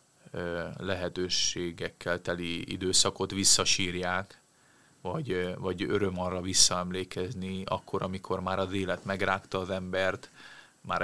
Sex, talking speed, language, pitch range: male, 100 wpm, Hungarian, 90-100 Hz